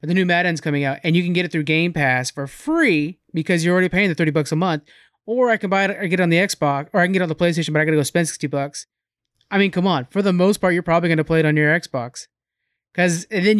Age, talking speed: 30-49, 305 wpm